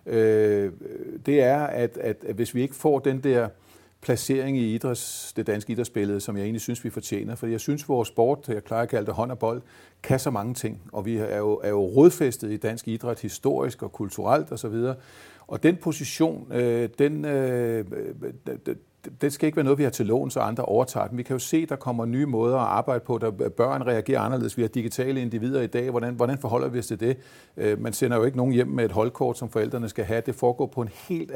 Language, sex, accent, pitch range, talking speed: Danish, male, native, 110-130 Hz, 230 wpm